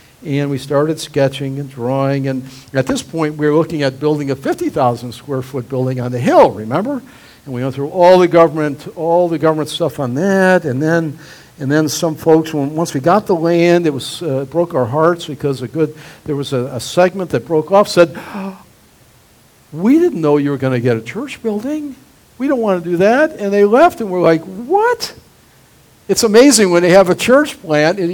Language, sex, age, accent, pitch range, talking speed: English, male, 60-79, American, 140-205 Hz, 215 wpm